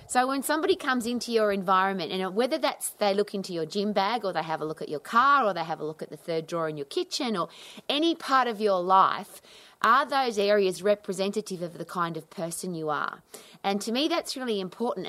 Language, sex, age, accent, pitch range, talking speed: English, female, 30-49, Australian, 175-240 Hz, 235 wpm